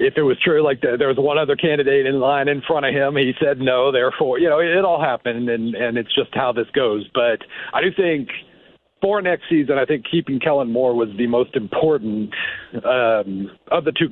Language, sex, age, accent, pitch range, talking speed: English, male, 50-69, American, 125-170 Hz, 220 wpm